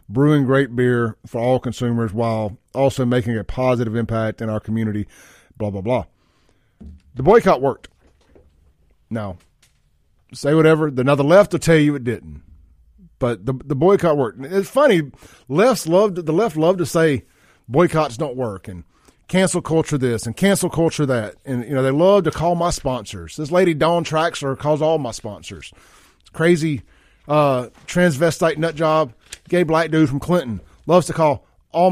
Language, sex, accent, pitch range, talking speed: English, male, American, 105-165 Hz, 170 wpm